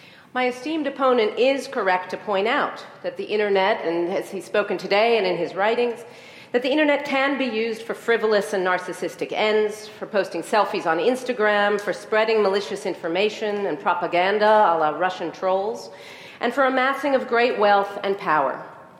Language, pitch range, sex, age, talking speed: English, 185-235 Hz, female, 40-59, 170 wpm